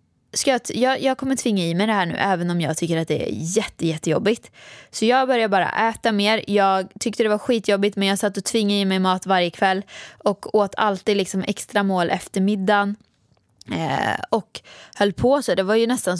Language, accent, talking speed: Swedish, native, 210 wpm